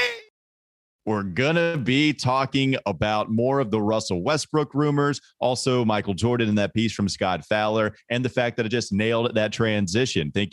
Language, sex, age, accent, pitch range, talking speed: English, male, 30-49, American, 95-120 Hz, 175 wpm